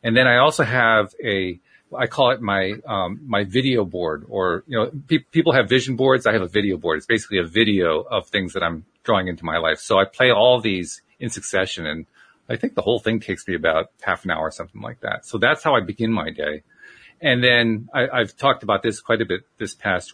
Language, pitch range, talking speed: English, 95-125 Hz, 240 wpm